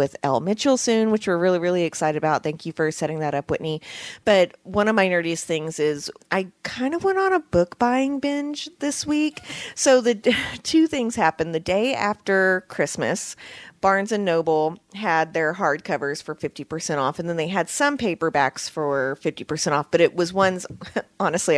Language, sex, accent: English, female, American